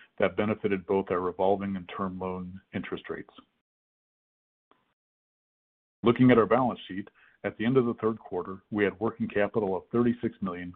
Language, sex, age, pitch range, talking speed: English, male, 40-59, 95-110 Hz, 160 wpm